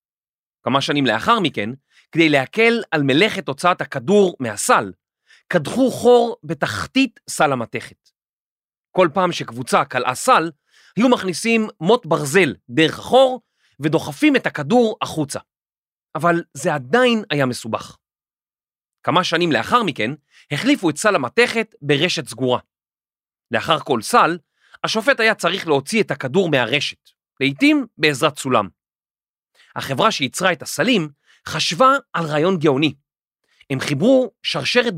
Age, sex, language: 30-49, male, Hebrew